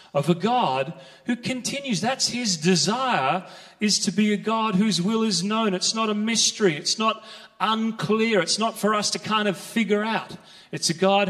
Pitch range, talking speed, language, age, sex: 185-215 Hz, 190 wpm, English, 30-49, male